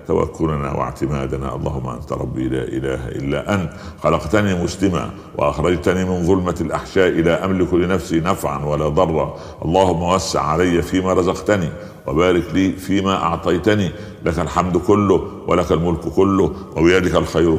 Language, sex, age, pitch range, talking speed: Arabic, male, 60-79, 80-95 Hz, 130 wpm